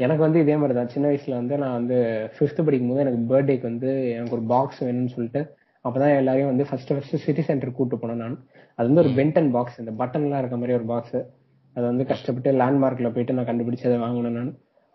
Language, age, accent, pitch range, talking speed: Tamil, 20-39, native, 125-145 Hz, 210 wpm